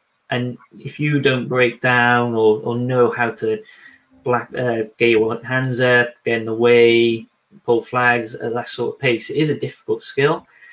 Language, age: English, 20-39